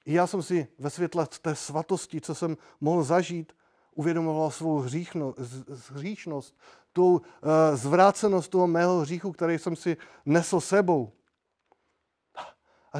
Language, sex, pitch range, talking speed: Czech, male, 145-180 Hz, 125 wpm